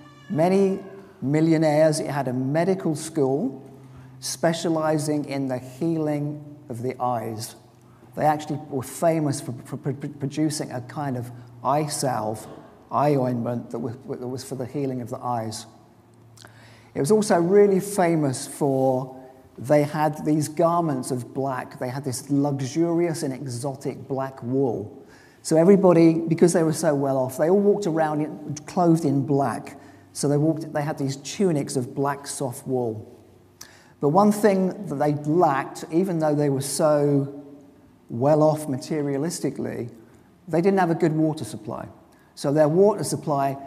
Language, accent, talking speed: English, British, 145 wpm